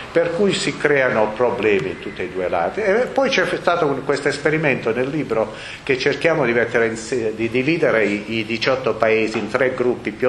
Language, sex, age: Italian, male, 50-69